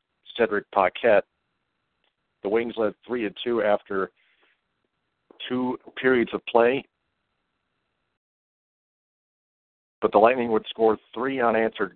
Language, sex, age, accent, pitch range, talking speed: English, male, 50-69, American, 95-110 Hz, 95 wpm